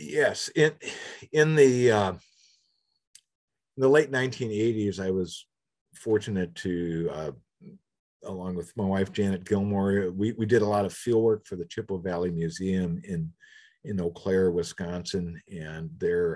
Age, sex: 50-69, male